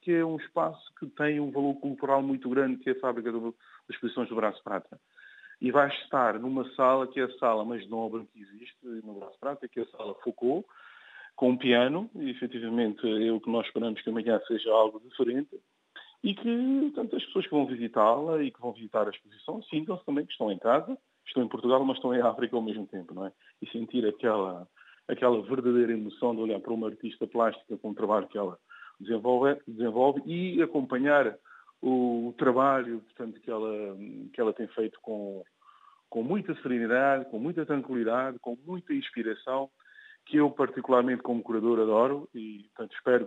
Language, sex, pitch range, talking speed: Portuguese, male, 115-140 Hz, 185 wpm